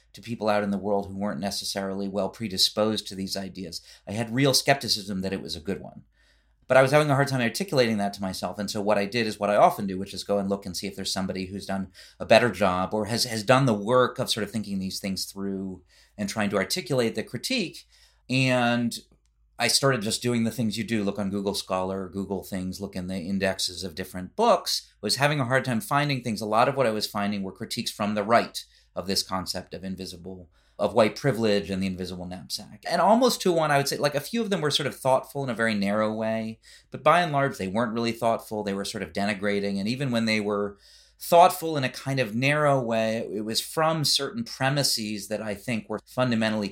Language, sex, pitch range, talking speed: English, male, 100-120 Hz, 240 wpm